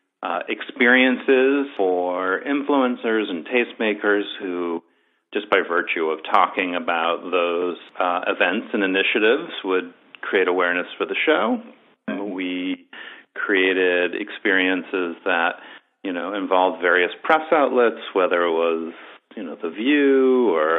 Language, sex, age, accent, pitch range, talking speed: English, male, 40-59, American, 85-120 Hz, 120 wpm